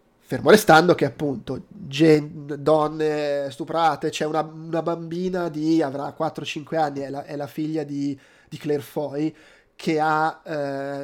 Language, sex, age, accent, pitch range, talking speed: Italian, male, 20-39, native, 140-165 Hz, 145 wpm